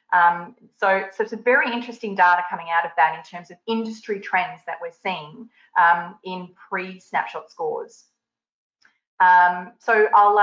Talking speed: 155 wpm